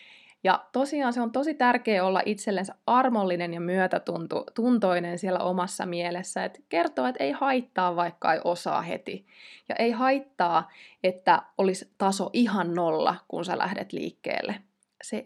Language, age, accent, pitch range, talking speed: Finnish, 20-39, native, 175-215 Hz, 140 wpm